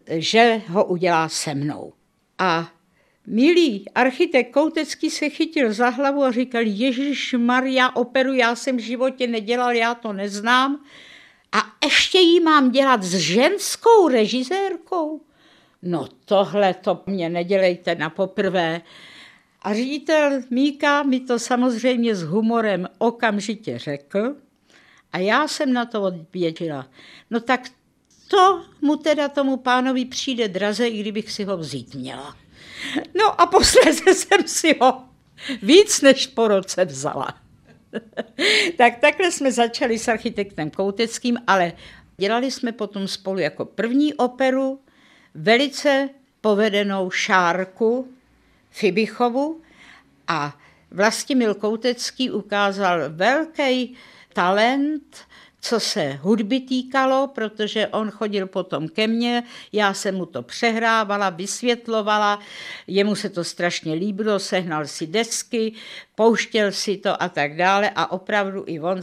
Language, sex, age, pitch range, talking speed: Czech, female, 60-79, 190-265 Hz, 125 wpm